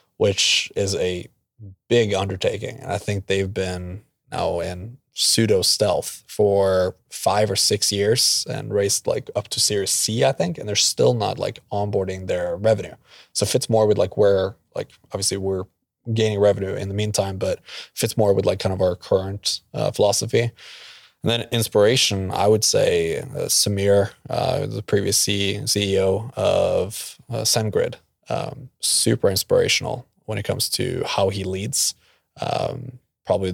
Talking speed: 160 wpm